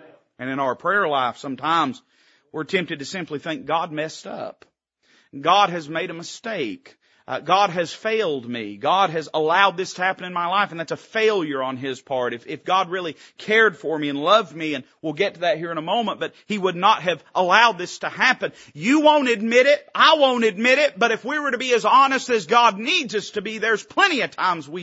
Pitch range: 135-200 Hz